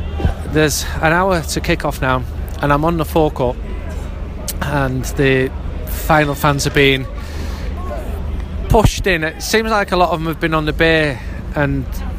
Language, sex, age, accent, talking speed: English, male, 30-49, British, 160 wpm